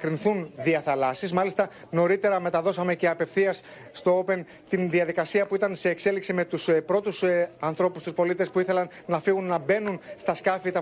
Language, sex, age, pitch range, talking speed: Greek, male, 30-49, 170-195 Hz, 165 wpm